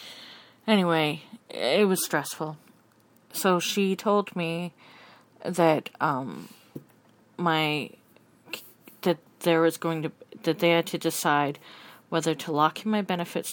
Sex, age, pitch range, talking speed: female, 40-59, 155-180 Hz, 120 wpm